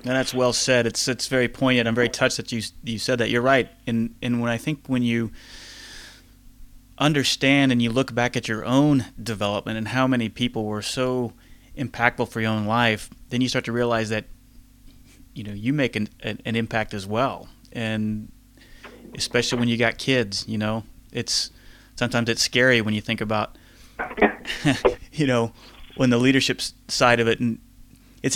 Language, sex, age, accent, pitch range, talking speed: English, male, 30-49, American, 110-130 Hz, 185 wpm